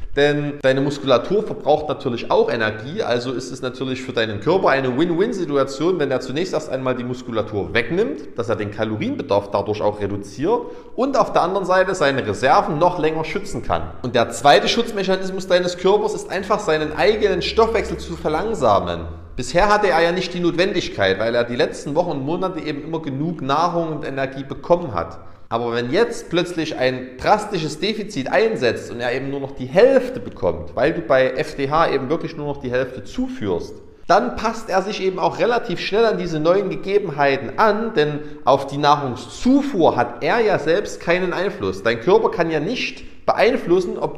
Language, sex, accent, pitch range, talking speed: German, male, German, 130-190 Hz, 180 wpm